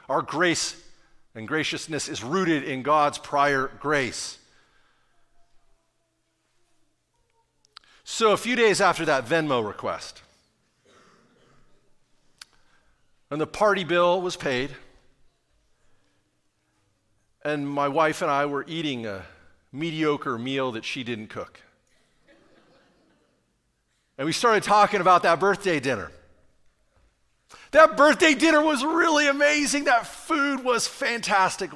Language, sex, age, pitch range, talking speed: English, male, 50-69, 120-200 Hz, 105 wpm